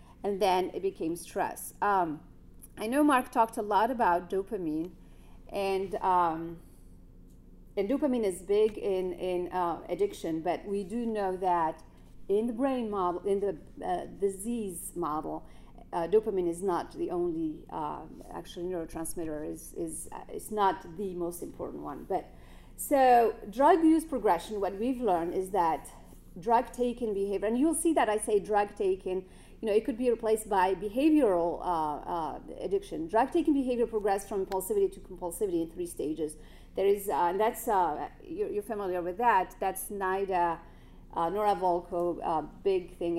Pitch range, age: 180-235 Hz, 40-59